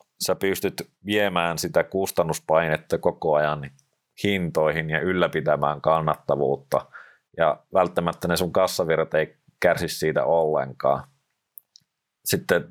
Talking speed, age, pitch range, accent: 100 wpm, 30-49, 85-100 Hz, native